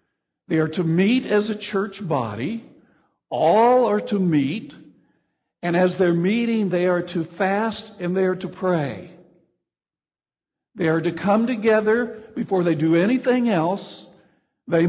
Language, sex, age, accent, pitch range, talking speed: English, male, 60-79, American, 165-215 Hz, 145 wpm